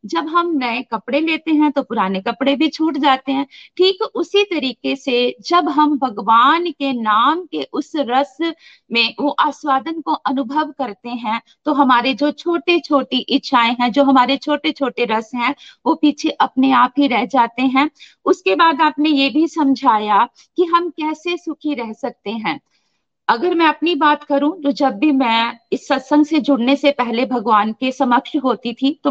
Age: 50-69